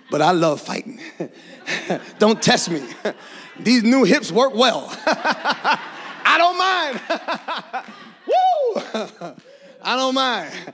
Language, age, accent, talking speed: English, 30-49, American, 105 wpm